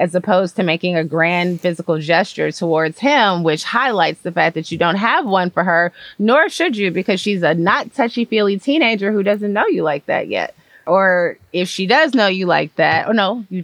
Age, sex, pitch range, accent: 30-49, female, 165-230 Hz, American